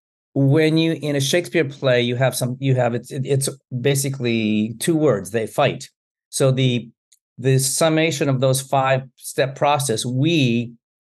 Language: English